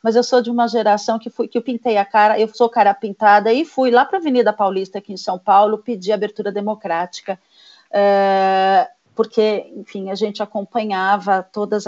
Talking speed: 180 wpm